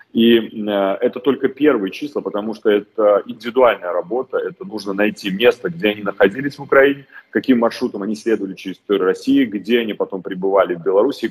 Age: 30-49